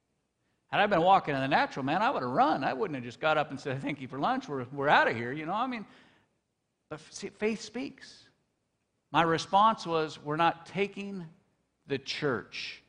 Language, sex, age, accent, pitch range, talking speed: English, male, 50-69, American, 150-220 Hz, 205 wpm